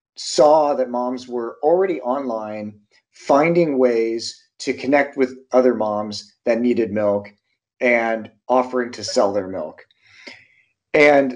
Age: 30-49